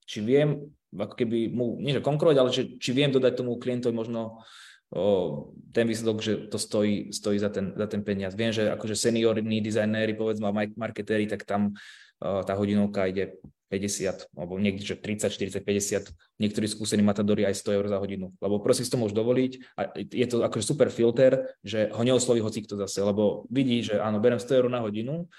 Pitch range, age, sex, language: 105-125 Hz, 20-39, male, Slovak